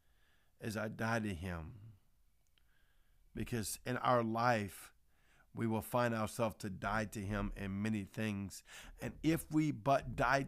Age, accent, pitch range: 50-69, American, 110-125 Hz